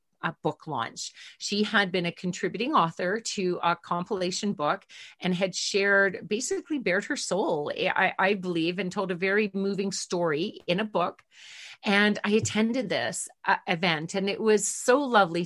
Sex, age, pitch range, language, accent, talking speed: female, 40-59, 175-220 Hz, English, American, 165 wpm